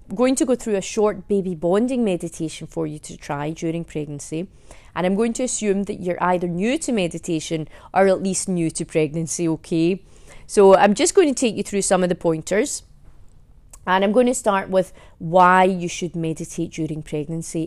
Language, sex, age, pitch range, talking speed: English, female, 30-49, 160-195 Hz, 195 wpm